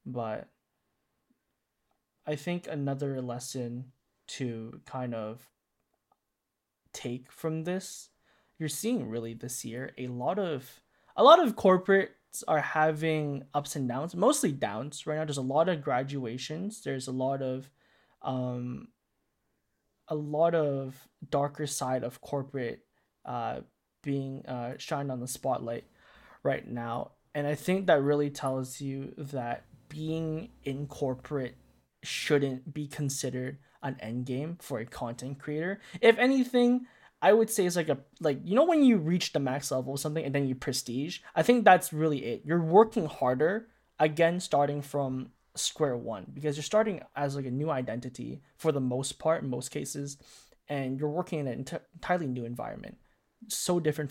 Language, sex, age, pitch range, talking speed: English, male, 20-39, 130-160 Hz, 155 wpm